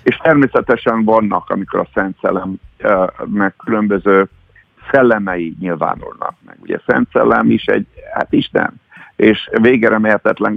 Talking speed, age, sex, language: 120 wpm, 50-69, male, Hungarian